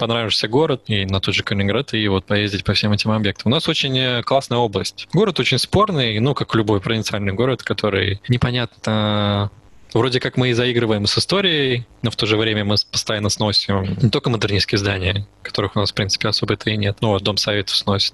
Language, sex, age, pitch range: Russian, male, 20-39, 105-120 Hz